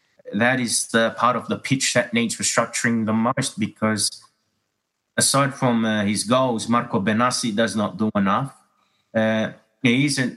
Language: English